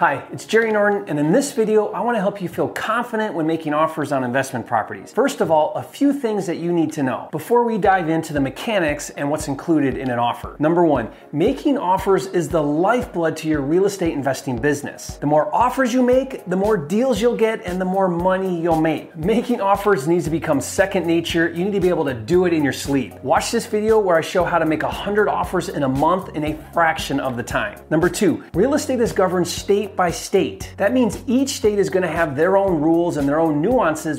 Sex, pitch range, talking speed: male, 150-205 Hz, 235 wpm